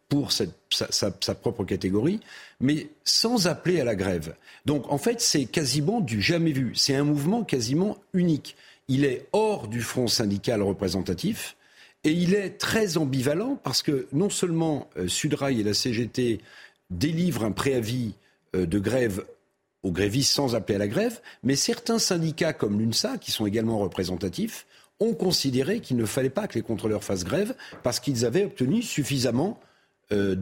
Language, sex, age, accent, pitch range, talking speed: French, male, 50-69, French, 110-170 Hz, 160 wpm